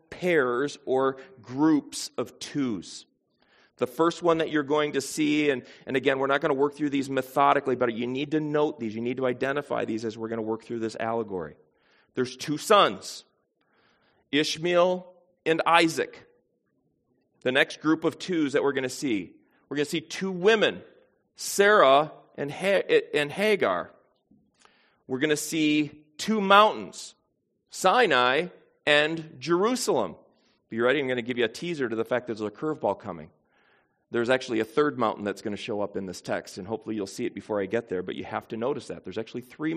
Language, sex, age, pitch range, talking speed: English, male, 40-59, 120-160 Hz, 190 wpm